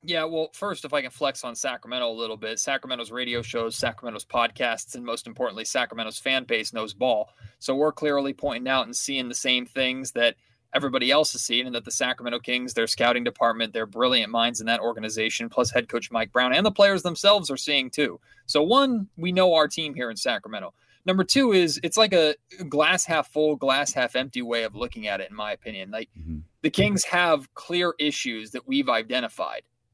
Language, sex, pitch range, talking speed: English, male, 125-165 Hz, 210 wpm